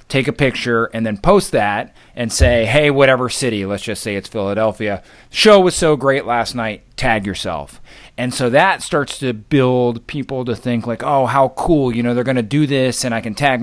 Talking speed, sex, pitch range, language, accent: 210 wpm, male, 110-130 Hz, English, American